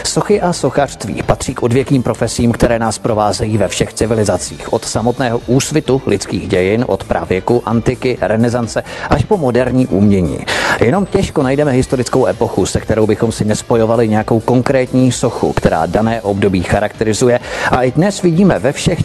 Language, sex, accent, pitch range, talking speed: Czech, male, native, 110-135 Hz, 155 wpm